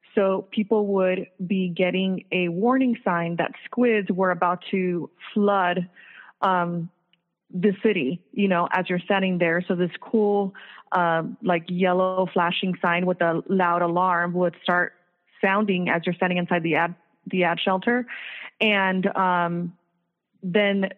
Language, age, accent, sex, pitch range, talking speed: English, 20-39, American, female, 175-195 Hz, 145 wpm